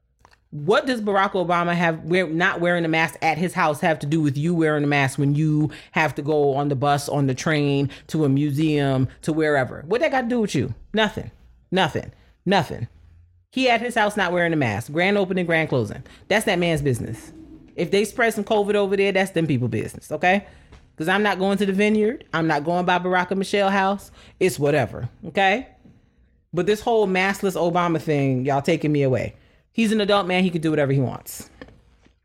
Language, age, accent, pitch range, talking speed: English, 40-59, American, 140-185 Hz, 210 wpm